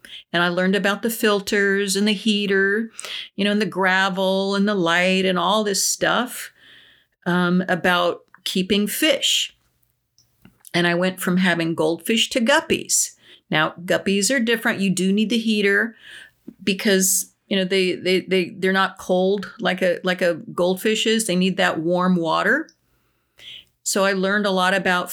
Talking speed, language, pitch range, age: 165 wpm, English, 185-215 Hz, 50-69